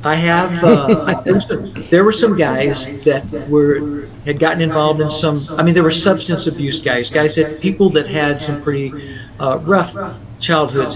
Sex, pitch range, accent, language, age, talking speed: male, 140-165 Hz, American, English, 50-69, 170 wpm